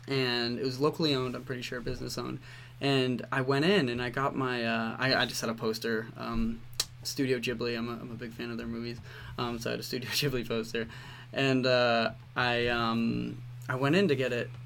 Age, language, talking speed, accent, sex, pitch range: 20-39, English, 225 wpm, American, male, 120-135 Hz